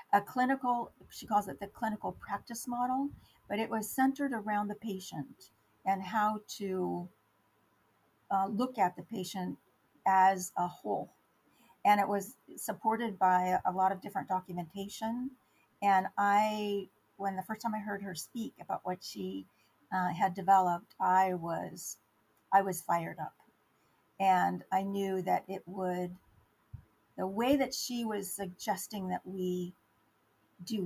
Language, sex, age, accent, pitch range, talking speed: English, female, 50-69, American, 180-215 Hz, 145 wpm